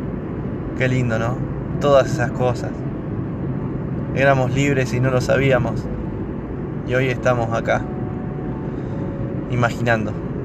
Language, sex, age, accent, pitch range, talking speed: Spanish, male, 20-39, Argentinian, 120-135 Hz, 100 wpm